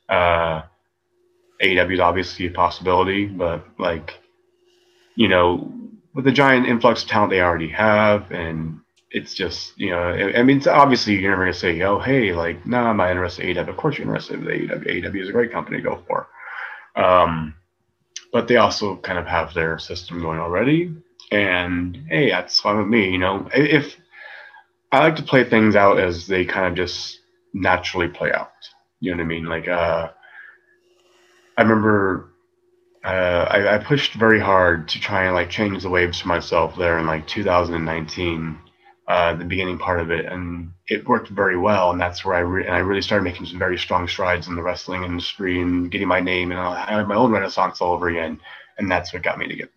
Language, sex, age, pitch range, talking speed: English, male, 30-49, 85-115 Hz, 200 wpm